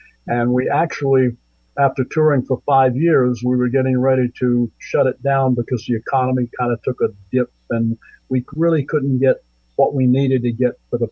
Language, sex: English, male